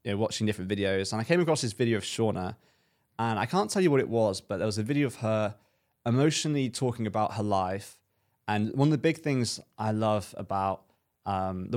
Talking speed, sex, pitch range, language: 225 wpm, male, 100-125 Hz, English